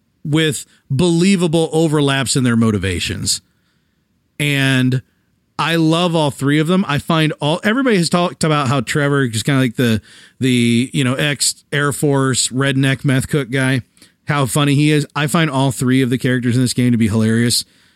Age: 40-59